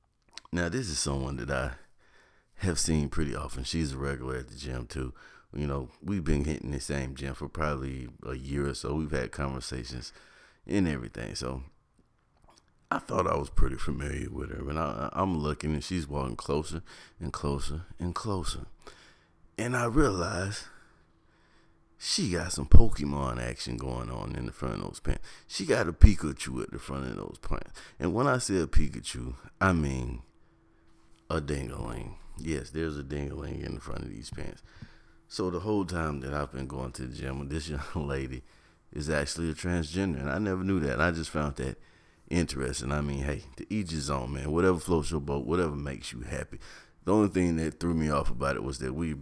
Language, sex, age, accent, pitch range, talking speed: English, male, 30-49, American, 65-80 Hz, 190 wpm